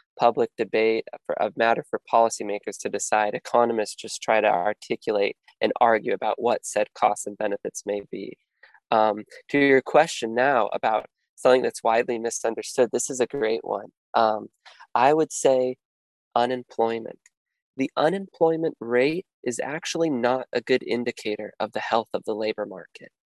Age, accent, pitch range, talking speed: 20-39, American, 115-140 Hz, 150 wpm